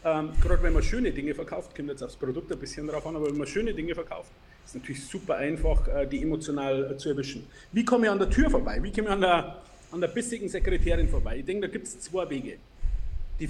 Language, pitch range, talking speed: English, 150-215 Hz, 255 wpm